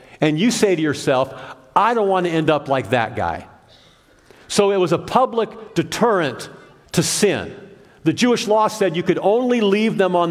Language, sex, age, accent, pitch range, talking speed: English, male, 50-69, American, 150-205 Hz, 185 wpm